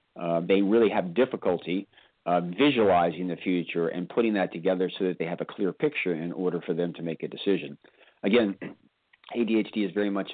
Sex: male